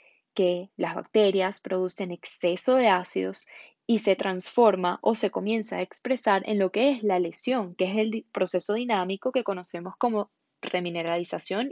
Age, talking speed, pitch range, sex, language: 10-29, 155 wpm, 180-225 Hz, female, Spanish